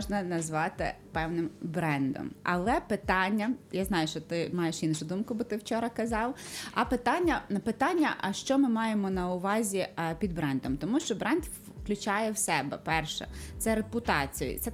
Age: 20-39